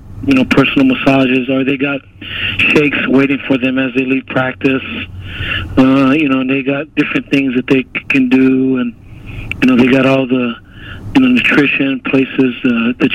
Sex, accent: male, American